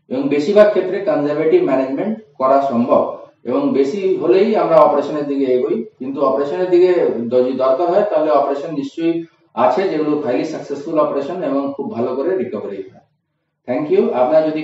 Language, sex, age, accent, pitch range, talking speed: Bengali, male, 30-49, native, 130-165 Hz, 150 wpm